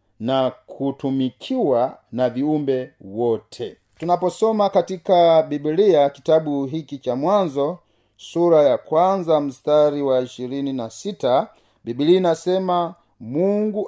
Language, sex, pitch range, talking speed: Swahili, male, 135-195 Hz, 90 wpm